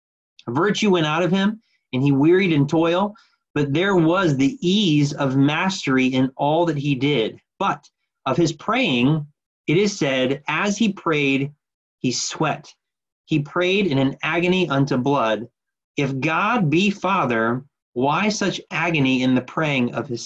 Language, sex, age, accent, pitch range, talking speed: English, male, 30-49, American, 125-165 Hz, 155 wpm